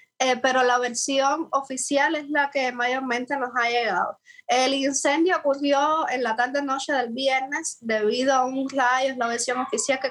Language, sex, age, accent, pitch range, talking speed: Spanish, female, 20-39, American, 235-280 Hz, 165 wpm